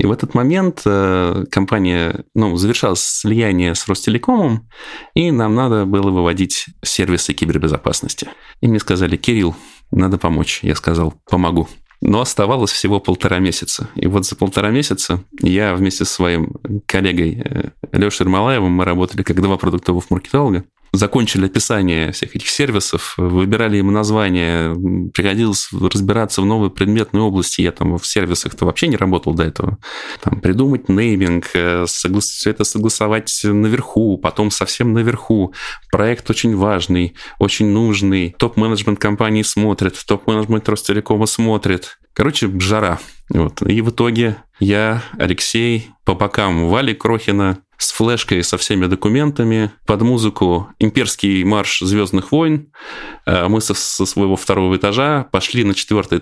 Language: Russian